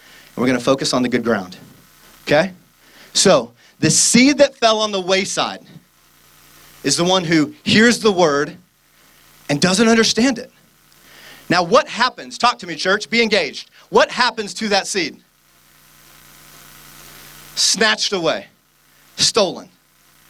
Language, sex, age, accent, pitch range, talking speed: English, male, 30-49, American, 135-200 Hz, 135 wpm